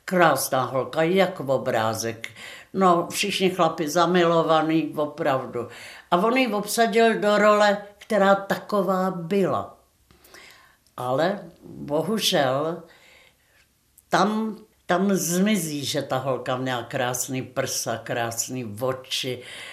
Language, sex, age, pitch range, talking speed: Czech, female, 60-79, 150-195 Hz, 95 wpm